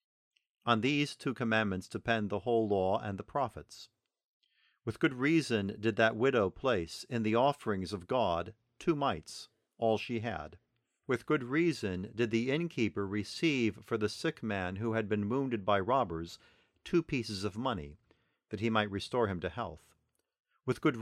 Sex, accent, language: male, American, English